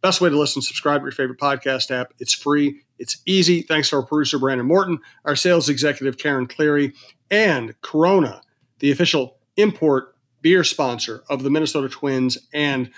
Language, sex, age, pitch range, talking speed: English, male, 40-59, 130-155 Hz, 170 wpm